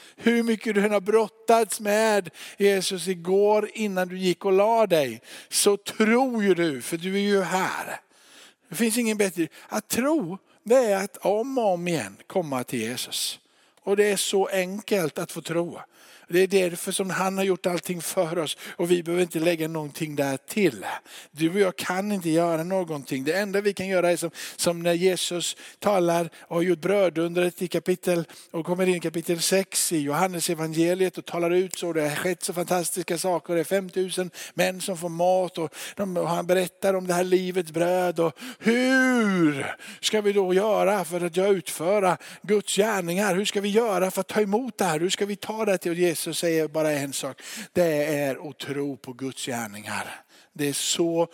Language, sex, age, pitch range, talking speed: Swedish, male, 50-69, 155-195 Hz, 195 wpm